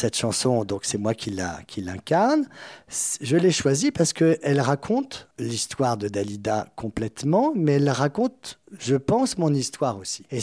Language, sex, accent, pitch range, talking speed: French, male, French, 130-185 Hz, 160 wpm